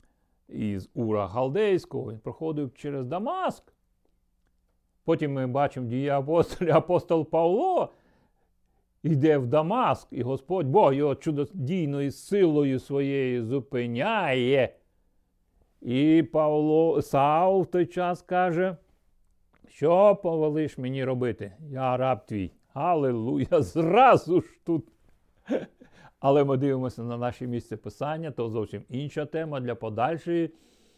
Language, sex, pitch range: Ukrainian, male, 110-155 Hz